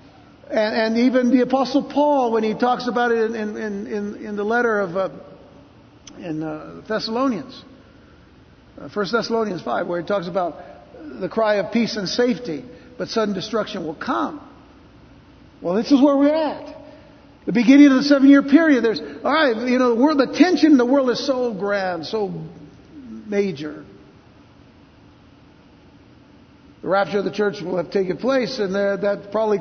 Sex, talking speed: male, 170 wpm